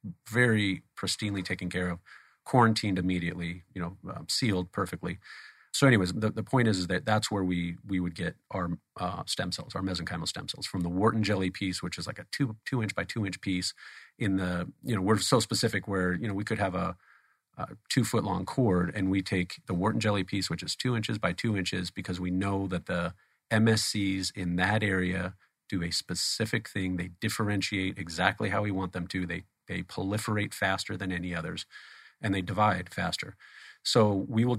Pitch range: 90-110 Hz